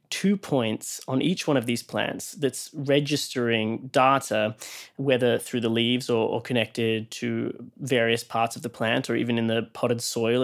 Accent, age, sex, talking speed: Australian, 20-39, male, 175 wpm